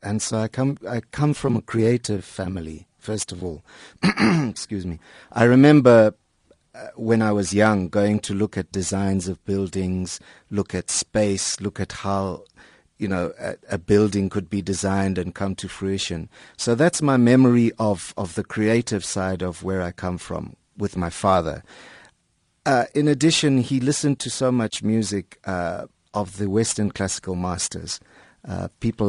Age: 50-69